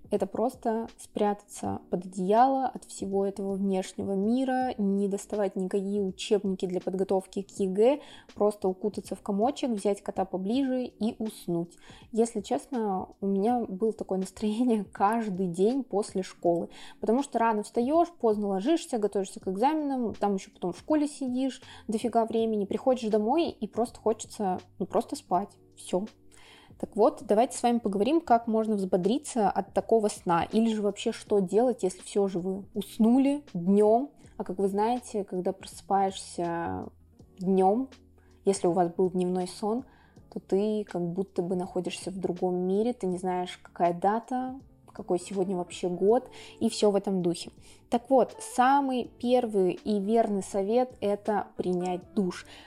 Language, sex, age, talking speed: Russian, female, 20-39, 150 wpm